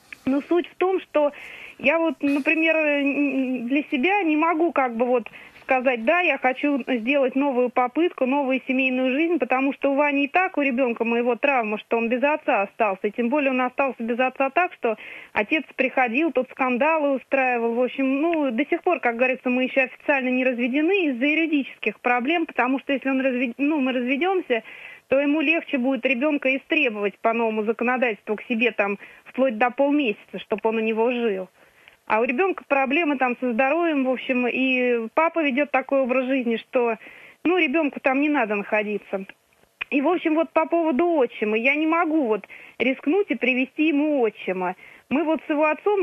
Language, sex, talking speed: Russian, female, 180 wpm